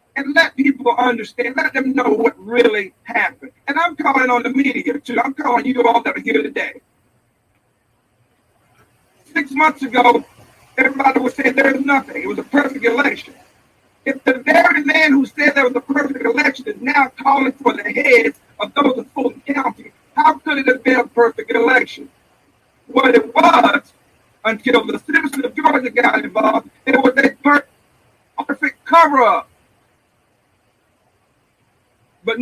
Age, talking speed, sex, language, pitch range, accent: 50-69, 155 wpm, male, English, 235-290 Hz, American